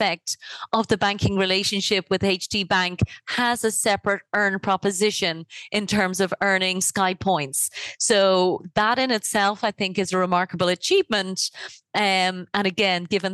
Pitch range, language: 180-215 Hz, English